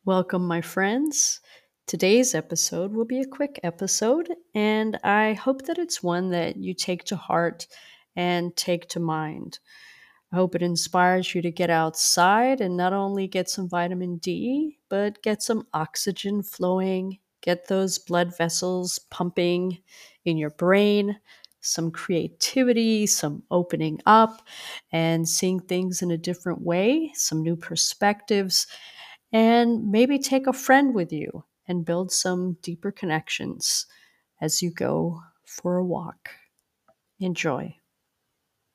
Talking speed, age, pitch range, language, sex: 135 wpm, 40-59, 175-220 Hz, English, female